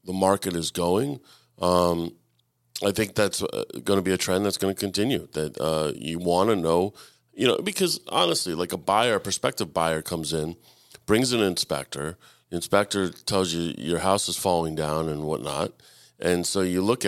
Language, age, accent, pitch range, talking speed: English, 40-59, American, 85-110 Hz, 185 wpm